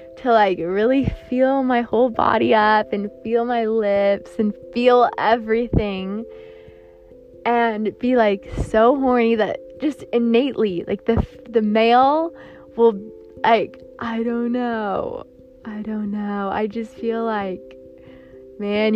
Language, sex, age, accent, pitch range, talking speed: English, female, 20-39, American, 200-240 Hz, 125 wpm